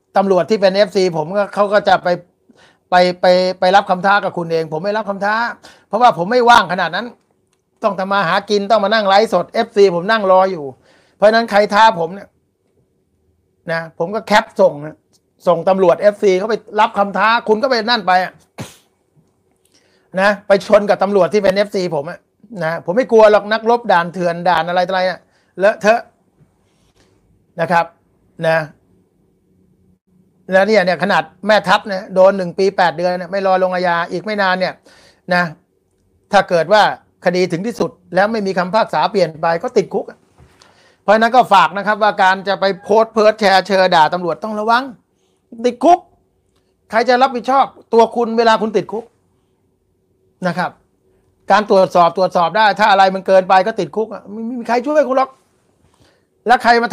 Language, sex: Thai, male